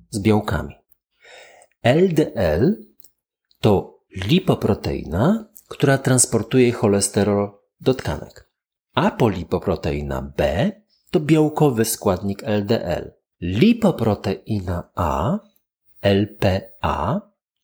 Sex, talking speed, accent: male, 65 wpm, native